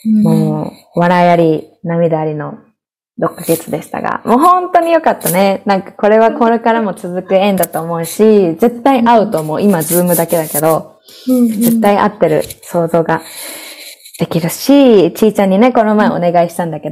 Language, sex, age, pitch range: Japanese, female, 20-39, 170-240 Hz